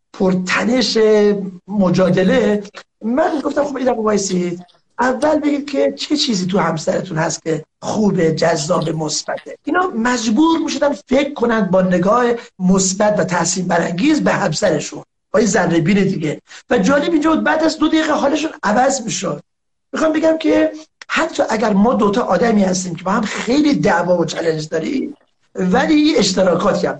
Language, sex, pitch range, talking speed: Persian, male, 185-280 Hz, 155 wpm